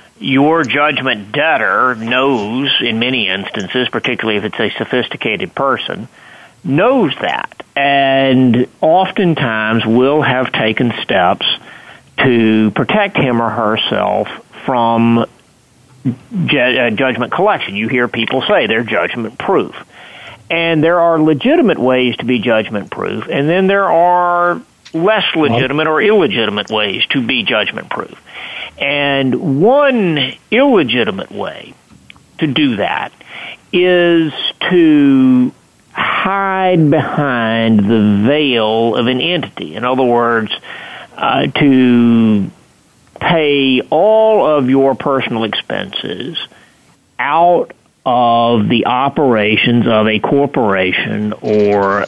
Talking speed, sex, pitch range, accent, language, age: 105 wpm, male, 115-155 Hz, American, English, 50-69